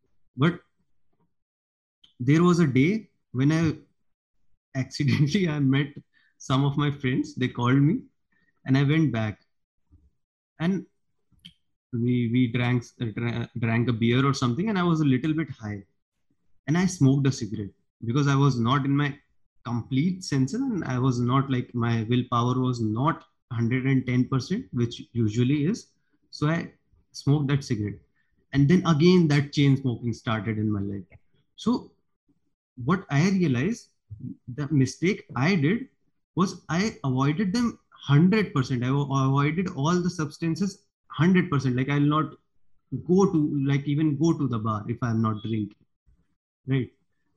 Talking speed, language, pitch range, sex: 145 wpm, English, 120-165 Hz, male